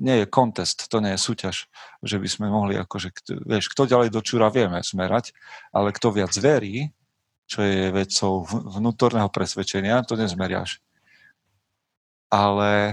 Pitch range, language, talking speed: 100-115 Hz, Slovak, 145 wpm